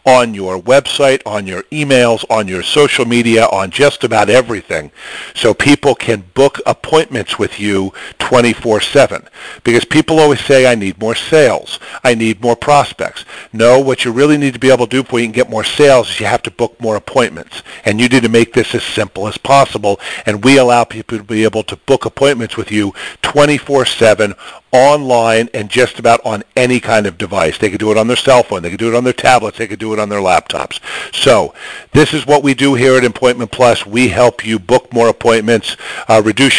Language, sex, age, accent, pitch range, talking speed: English, male, 50-69, American, 110-135 Hz, 210 wpm